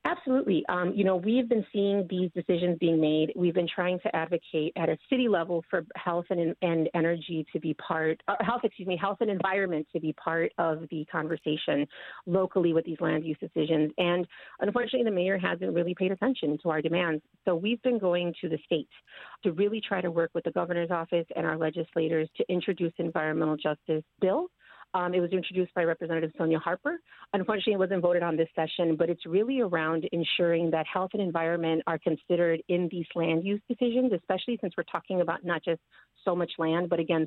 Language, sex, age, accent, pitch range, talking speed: English, female, 40-59, American, 165-190 Hz, 200 wpm